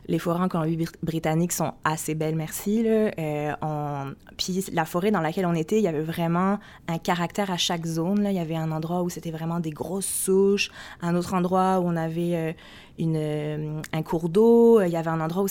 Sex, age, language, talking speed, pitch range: female, 20-39, French, 225 wpm, 165-195 Hz